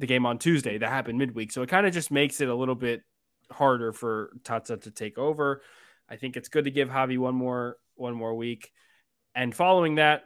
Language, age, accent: English, 20-39, American